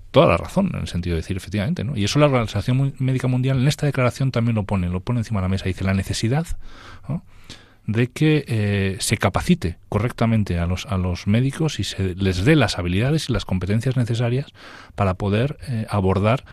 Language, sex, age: Spanish, male, 40-59